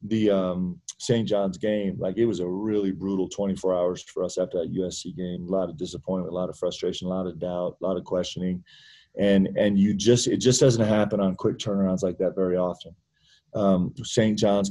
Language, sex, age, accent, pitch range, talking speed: English, male, 30-49, American, 95-115 Hz, 215 wpm